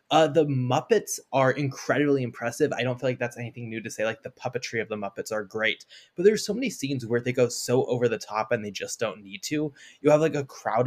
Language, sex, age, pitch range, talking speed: English, male, 20-39, 120-145 Hz, 255 wpm